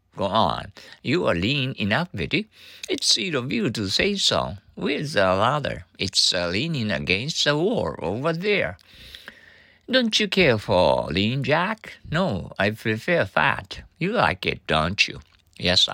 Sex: male